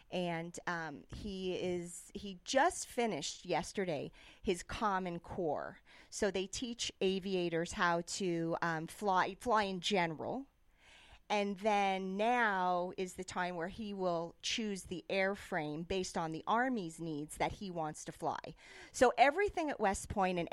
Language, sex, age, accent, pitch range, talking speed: English, female, 40-59, American, 180-240 Hz, 145 wpm